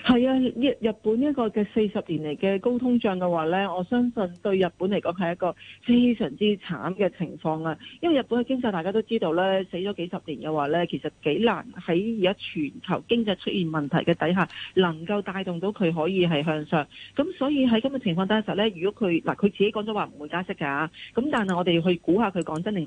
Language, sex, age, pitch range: Chinese, female, 40-59, 170-220 Hz